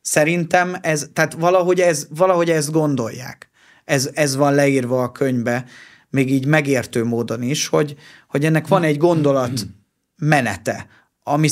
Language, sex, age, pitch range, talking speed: Hungarian, male, 30-49, 130-155 Hz, 140 wpm